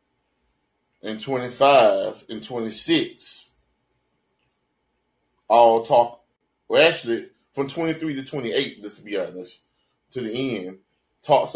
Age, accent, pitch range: 30-49, American, 110-155 Hz